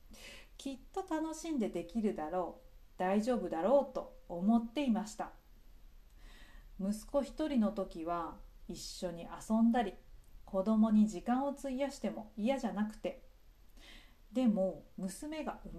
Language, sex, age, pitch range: Japanese, female, 40-59, 185-240 Hz